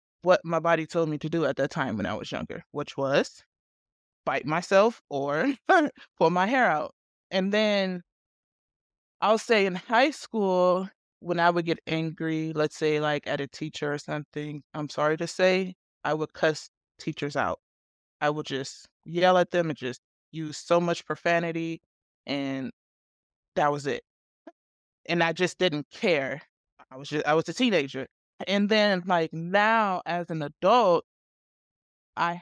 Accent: American